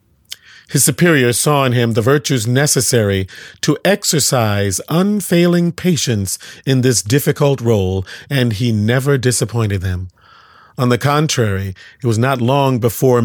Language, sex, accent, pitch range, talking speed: English, male, American, 110-150 Hz, 130 wpm